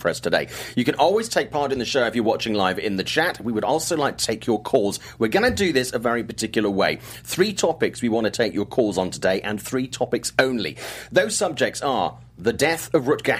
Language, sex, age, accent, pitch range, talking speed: English, male, 30-49, British, 115-155 Hz, 250 wpm